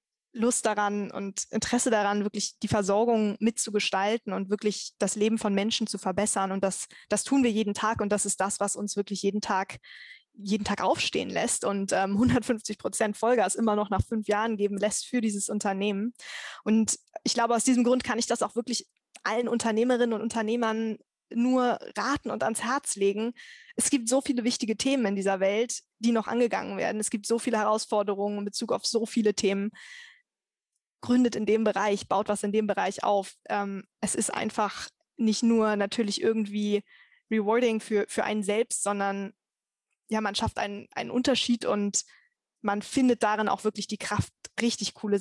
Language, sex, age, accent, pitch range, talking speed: German, female, 20-39, German, 205-235 Hz, 180 wpm